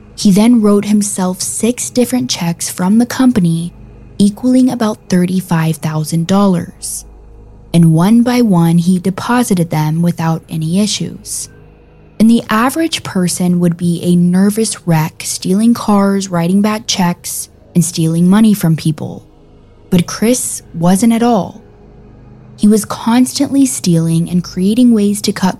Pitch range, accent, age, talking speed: 165-210 Hz, American, 20-39, 130 wpm